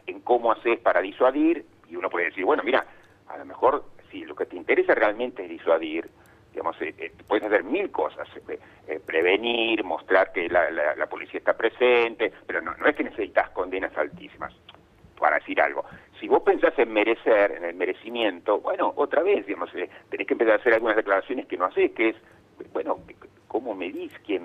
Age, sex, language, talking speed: 50-69, male, Spanish, 195 wpm